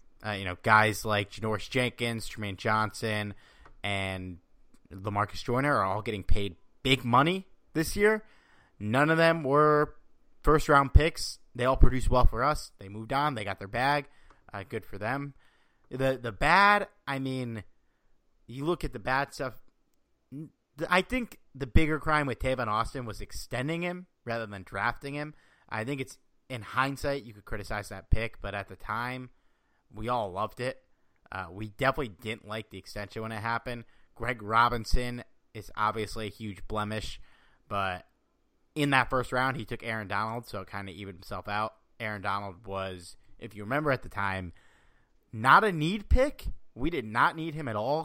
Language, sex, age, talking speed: English, male, 30-49, 175 wpm